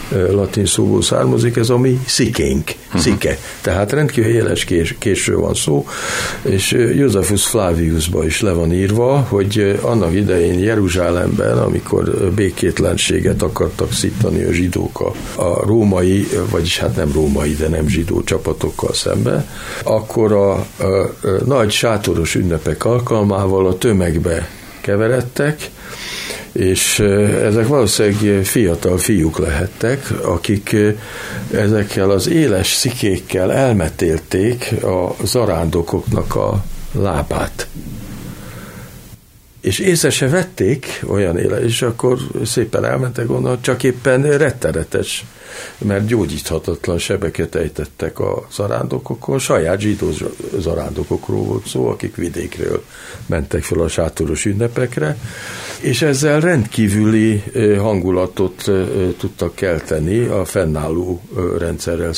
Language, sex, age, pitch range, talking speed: Hungarian, male, 60-79, 90-120 Hz, 105 wpm